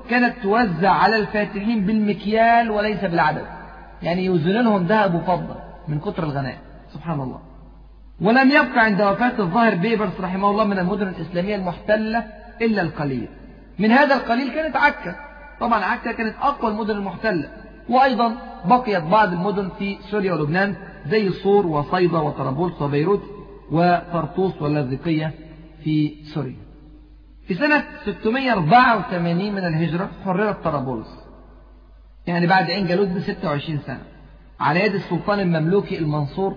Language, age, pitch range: Arabic, 40-59, 170-230 Hz